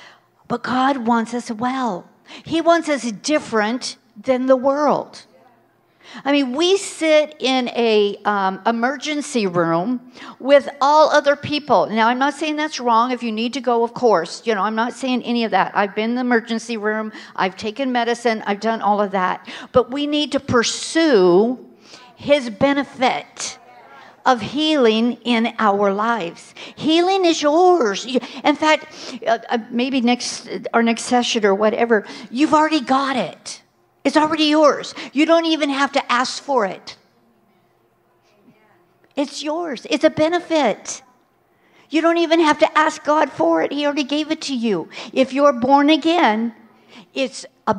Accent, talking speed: American, 155 wpm